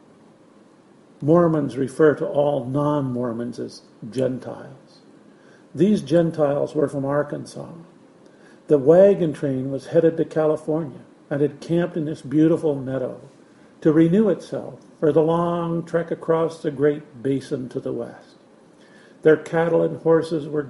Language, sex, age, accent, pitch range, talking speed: English, male, 50-69, American, 140-165 Hz, 130 wpm